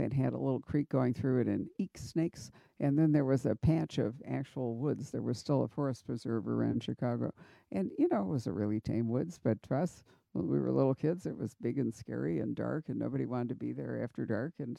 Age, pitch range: 60-79, 120-155 Hz